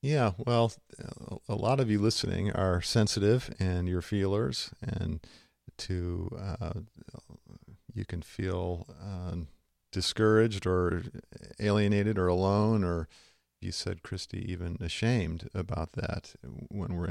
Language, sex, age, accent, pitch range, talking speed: English, male, 50-69, American, 90-110 Hz, 120 wpm